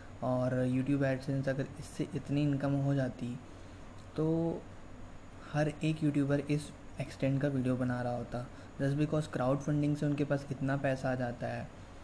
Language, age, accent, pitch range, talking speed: Hindi, 20-39, native, 120-140 Hz, 160 wpm